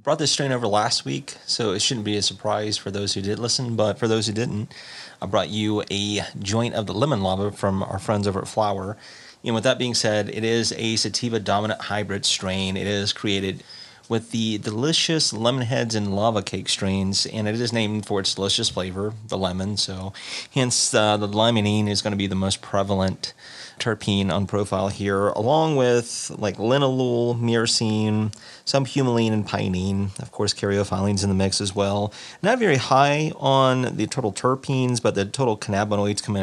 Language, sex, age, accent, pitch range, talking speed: English, male, 30-49, American, 95-115 Hz, 190 wpm